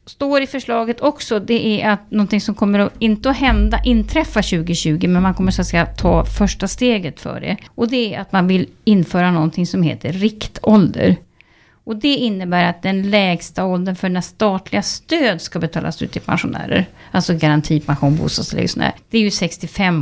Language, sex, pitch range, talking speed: Swedish, female, 175-225 Hz, 185 wpm